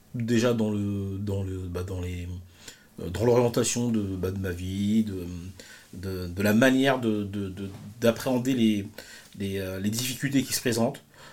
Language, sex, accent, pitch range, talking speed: French, male, French, 105-130 Hz, 165 wpm